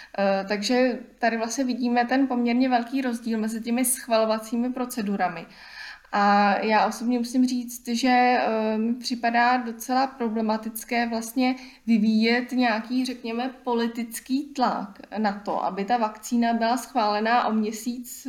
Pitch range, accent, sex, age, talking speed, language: 210-240 Hz, native, female, 20-39, 120 wpm, Czech